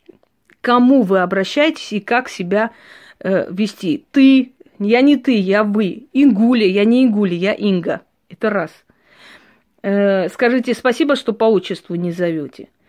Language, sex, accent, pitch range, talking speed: Russian, female, native, 205-265 Hz, 140 wpm